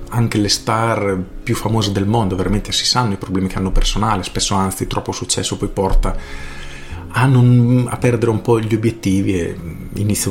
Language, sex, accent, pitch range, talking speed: Italian, male, native, 100-120 Hz, 175 wpm